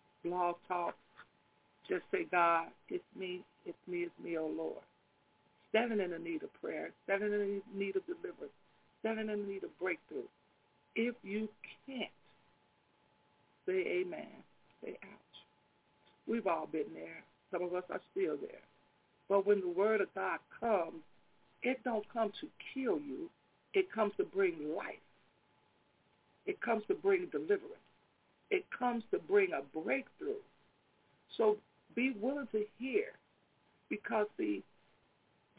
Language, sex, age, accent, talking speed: English, female, 60-79, American, 140 wpm